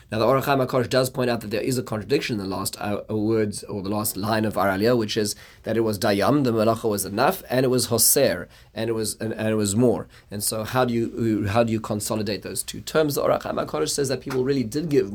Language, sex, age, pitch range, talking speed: English, male, 30-49, 105-125 Hz, 260 wpm